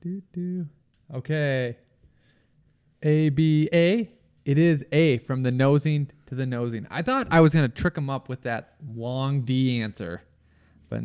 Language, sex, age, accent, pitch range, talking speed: English, male, 20-39, American, 120-165 Hz, 150 wpm